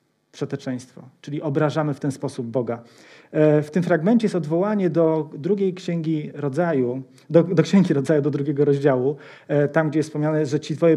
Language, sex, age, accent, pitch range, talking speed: Polish, male, 40-59, native, 145-175 Hz, 165 wpm